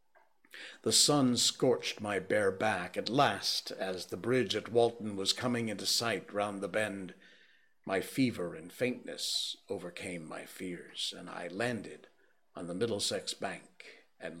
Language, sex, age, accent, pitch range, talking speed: English, male, 60-79, American, 100-135 Hz, 145 wpm